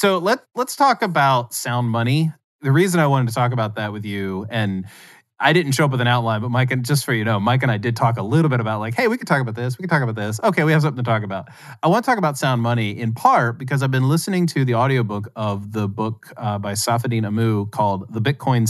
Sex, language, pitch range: male, English, 115-145 Hz